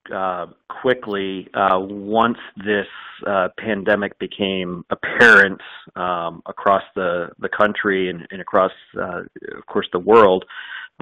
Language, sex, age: English, male, 40-59